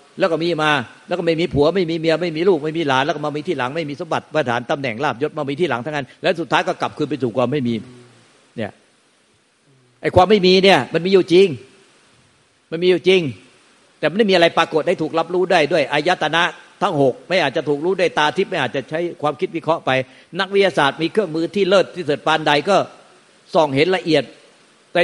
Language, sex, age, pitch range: Thai, male, 60-79, 140-180 Hz